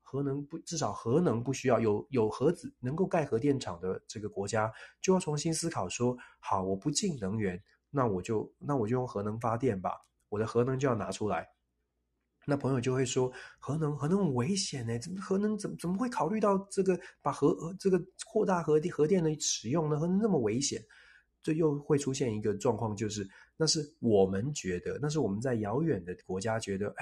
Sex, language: male, Chinese